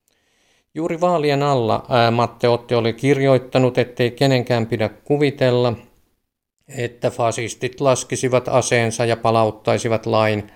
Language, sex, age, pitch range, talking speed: Finnish, male, 50-69, 110-130 Hz, 95 wpm